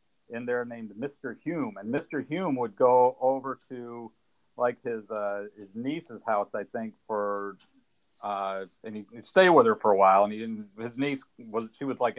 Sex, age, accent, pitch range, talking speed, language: male, 50-69, American, 120-150 Hz, 190 wpm, English